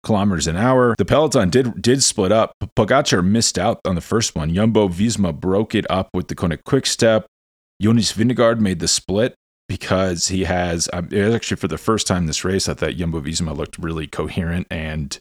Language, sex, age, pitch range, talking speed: English, male, 30-49, 80-110 Hz, 210 wpm